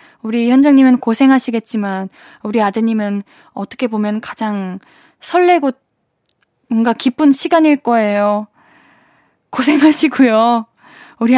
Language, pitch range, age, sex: Korean, 225-310 Hz, 10-29, female